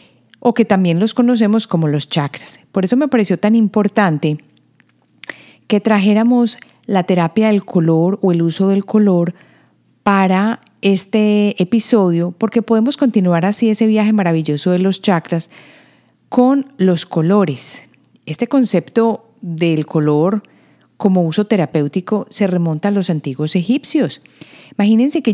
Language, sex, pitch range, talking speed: Spanish, female, 175-220 Hz, 135 wpm